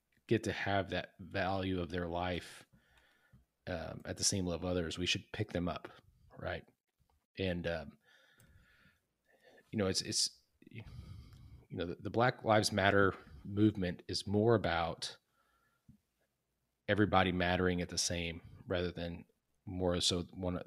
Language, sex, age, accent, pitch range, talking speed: English, male, 30-49, American, 85-105 Hz, 140 wpm